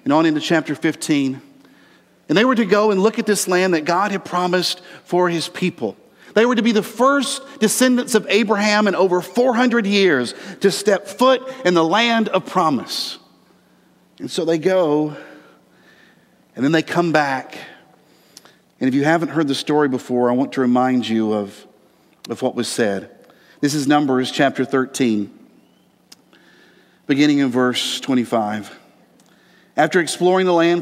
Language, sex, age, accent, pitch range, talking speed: English, male, 50-69, American, 150-210 Hz, 160 wpm